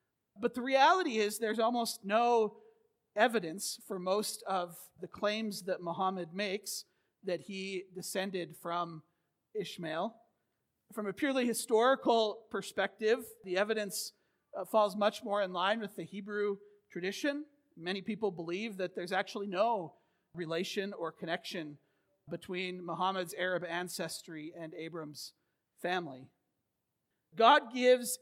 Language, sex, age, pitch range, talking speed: English, male, 40-59, 175-215 Hz, 120 wpm